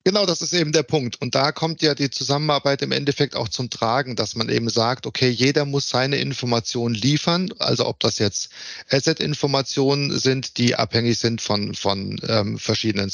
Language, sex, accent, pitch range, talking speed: German, male, German, 115-140 Hz, 185 wpm